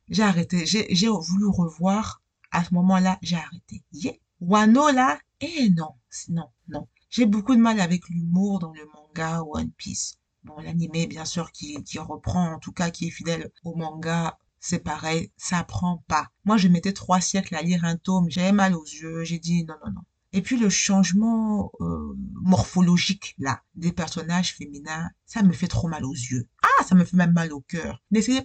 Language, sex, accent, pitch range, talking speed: French, female, French, 165-200 Hz, 195 wpm